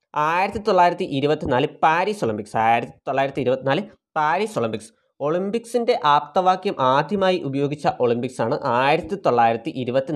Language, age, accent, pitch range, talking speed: Malayalam, 20-39, native, 125-180 Hz, 120 wpm